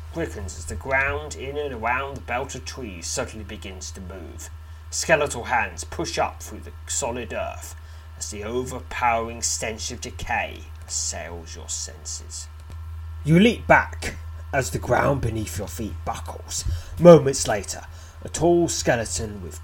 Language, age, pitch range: English, 30-49, 80-105 Hz